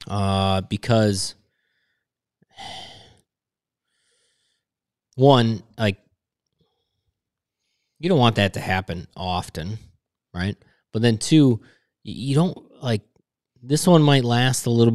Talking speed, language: 95 wpm, English